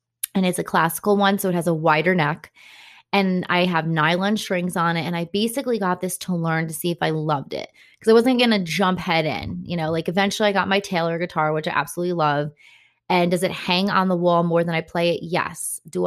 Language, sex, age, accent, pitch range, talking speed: English, female, 20-39, American, 160-195 Hz, 245 wpm